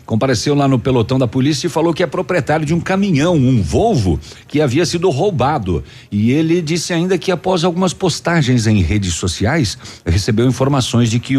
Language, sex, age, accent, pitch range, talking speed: Portuguese, male, 60-79, Brazilian, 95-145 Hz, 185 wpm